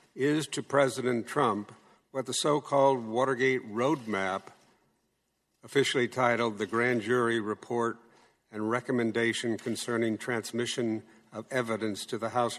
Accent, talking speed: American, 115 wpm